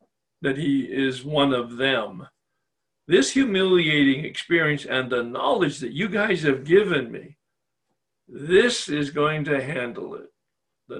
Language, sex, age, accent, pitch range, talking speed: English, male, 60-79, American, 135-185 Hz, 135 wpm